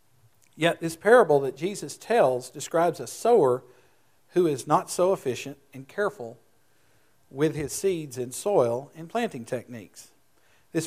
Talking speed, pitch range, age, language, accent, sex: 140 wpm, 130-165 Hz, 50-69, English, American, male